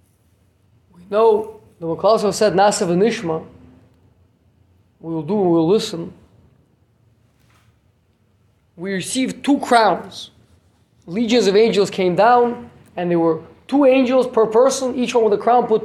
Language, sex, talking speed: English, male, 135 wpm